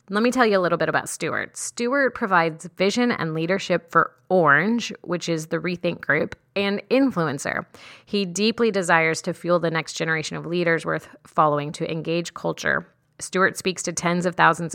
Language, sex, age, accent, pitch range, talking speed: English, female, 30-49, American, 165-185 Hz, 180 wpm